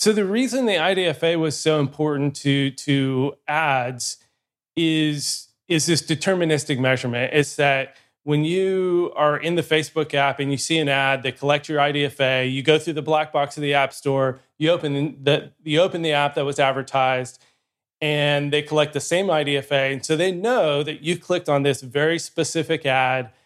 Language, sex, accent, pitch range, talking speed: English, male, American, 140-160 Hz, 180 wpm